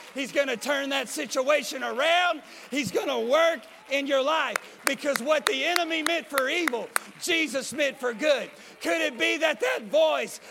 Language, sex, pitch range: English, male, 245-315 Hz